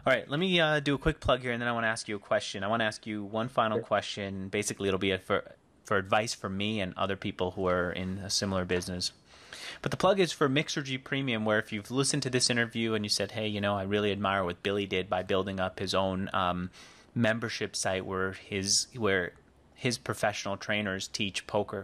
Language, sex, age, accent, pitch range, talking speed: English, male, 30-49, American, 95-115 Hz, 240 wpm